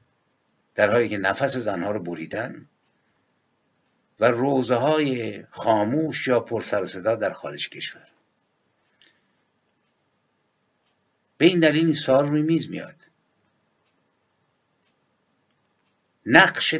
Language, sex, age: Persian, male, 60-79